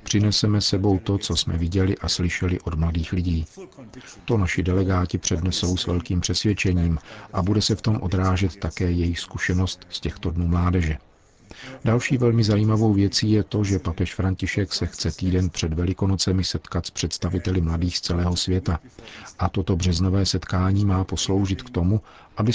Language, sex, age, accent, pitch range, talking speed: Czech, male, 50-69, native, 90-105 Hz, 160 wpm